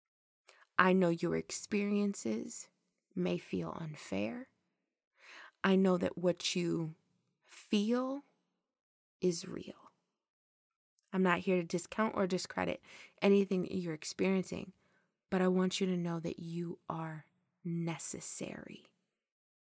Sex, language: female, English